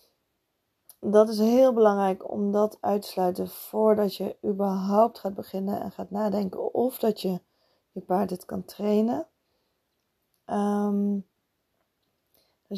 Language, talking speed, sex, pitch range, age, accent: Dutch, 115 wpm, female, 190-215 Hz, 20-39, Dutch